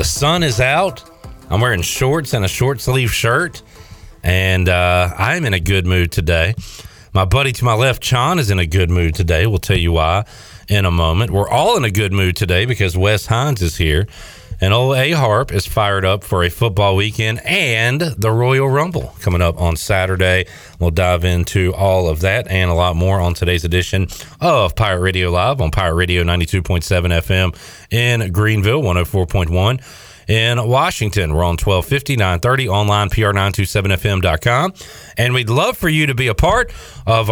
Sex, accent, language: male, American, English